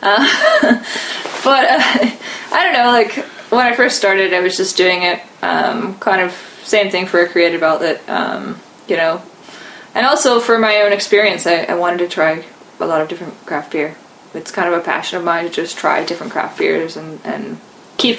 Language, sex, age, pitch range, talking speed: English, female, 20-39, 170-225 Hz, 200 wpm